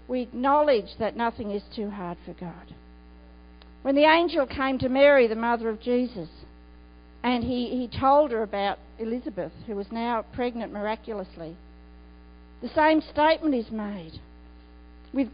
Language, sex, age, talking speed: English, female, 50-69, 145 wpm